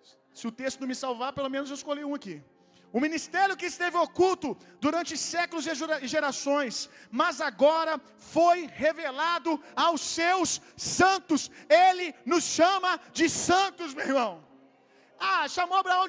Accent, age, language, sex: Brazilian, 40-59, Gujarati, male